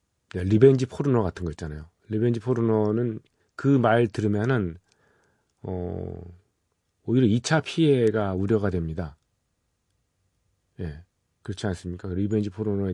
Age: 40-59